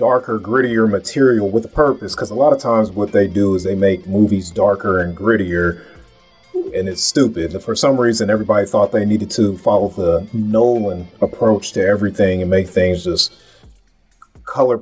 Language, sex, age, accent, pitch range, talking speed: English, male, 30-49, American, 100-130 Hz, 180 wpm